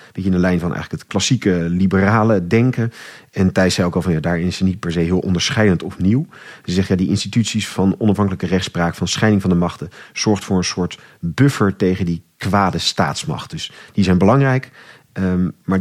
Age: 40-59